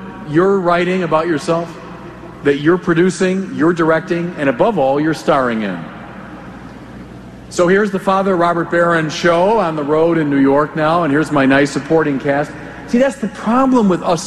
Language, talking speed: English, 175 wpm